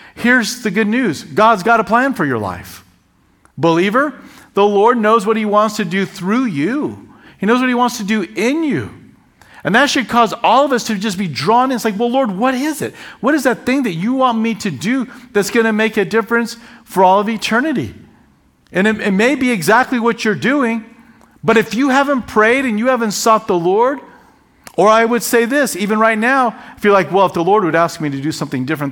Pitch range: 165-235 Hz